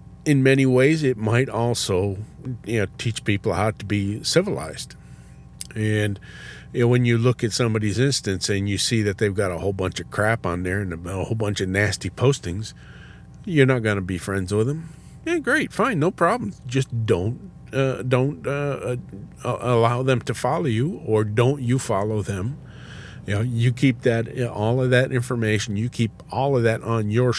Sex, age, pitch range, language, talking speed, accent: male, 50-69, 100-130 Hz, English, 190 wpm, American